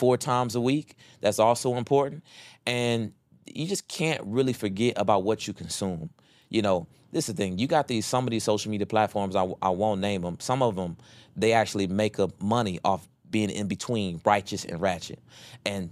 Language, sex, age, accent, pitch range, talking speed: English, male, 30-49, American, 95-125 Hz, 200 wpm